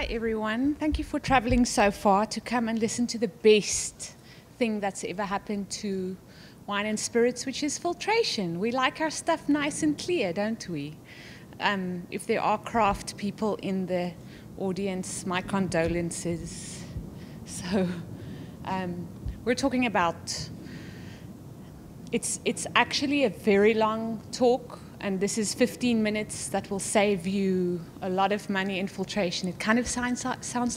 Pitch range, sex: 185-235 Hz, female